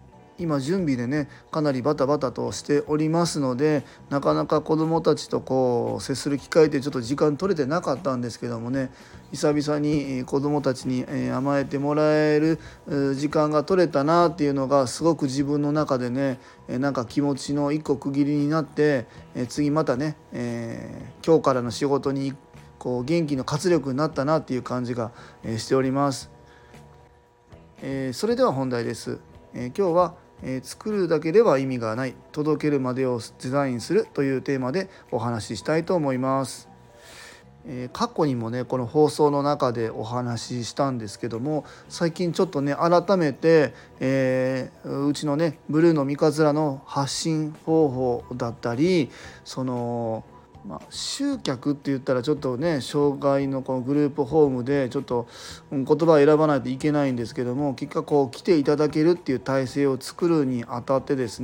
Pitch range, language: 130-150 Hz, Japanese